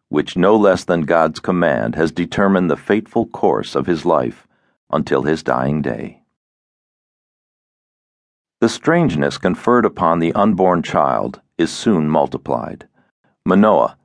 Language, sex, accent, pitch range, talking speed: English, male, American, 85-110 Hz, 125 wpm